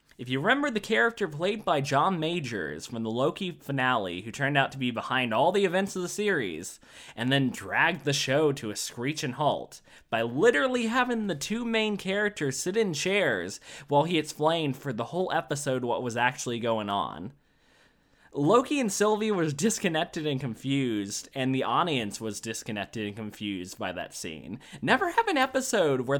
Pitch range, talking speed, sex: 115-185 Hz, 180 wpm, male